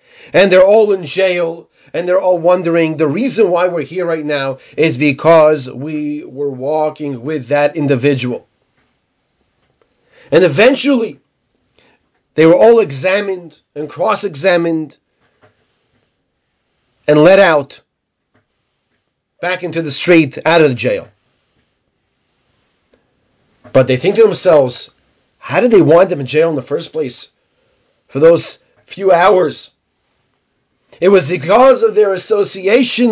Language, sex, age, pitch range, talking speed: English, male, 40-59, 155-205 Hz, 125 wpm